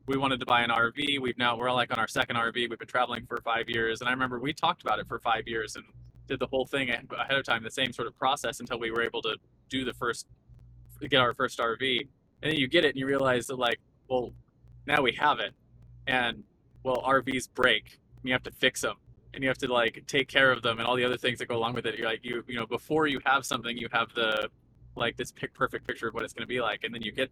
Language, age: English, 20-39